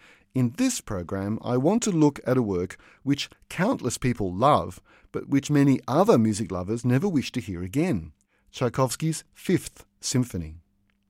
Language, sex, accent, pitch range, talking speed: English, male, Australian, 105-140 Hz, 150 wpm